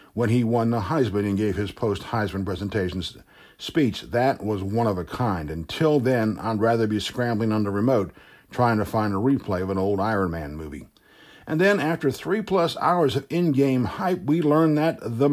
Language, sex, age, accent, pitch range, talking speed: English, male, 60-79, American, 110-145 Hz, 190 wpm